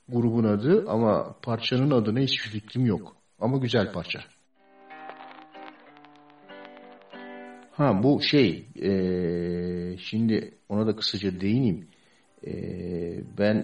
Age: 50-69